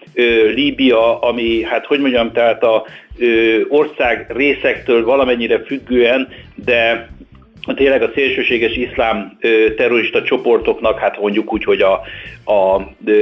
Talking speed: 105 wpm